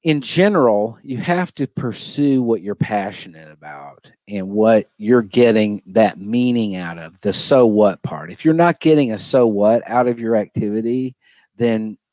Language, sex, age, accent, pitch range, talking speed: English, male, 50-69, American, 95-120 Hz, 170 wpm